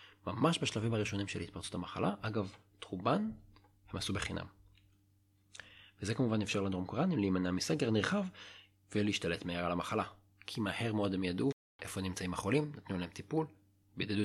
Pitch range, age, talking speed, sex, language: 95-125 Hz, 40-59, 145 wpm, male, Hebrew